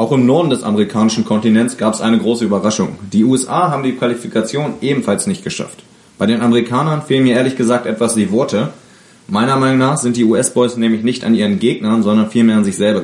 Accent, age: German, 30-49